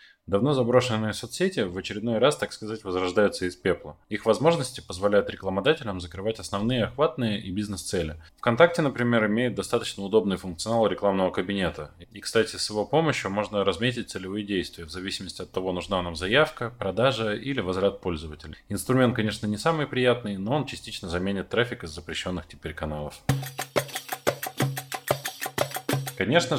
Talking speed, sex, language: 140 wpm, male, Russian